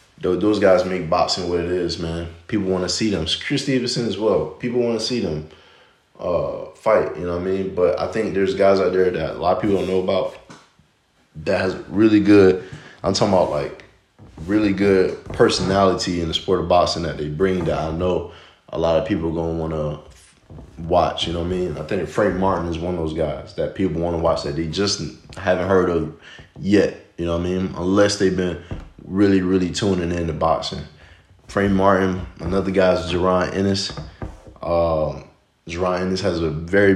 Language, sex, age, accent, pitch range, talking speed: English, male, 20-39, American, 85-95 Hz, 210 wpm